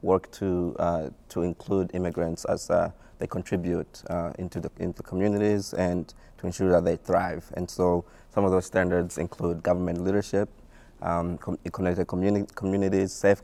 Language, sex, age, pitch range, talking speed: English, male, 20-39, 85-95 Hz, 160 wpm